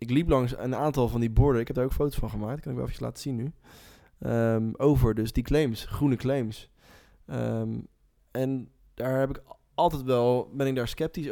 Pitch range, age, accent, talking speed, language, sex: 110-130 Hz, 20-39, Dutch, 195 wpm, Dutch, male